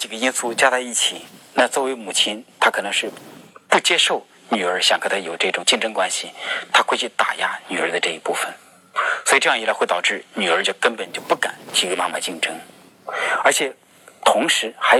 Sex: male